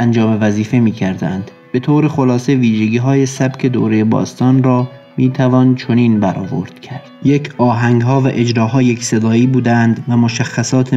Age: 30-49